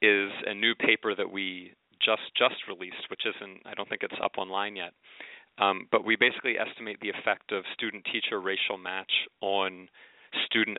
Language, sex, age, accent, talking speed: English, male, 30-49, American, 180 wpm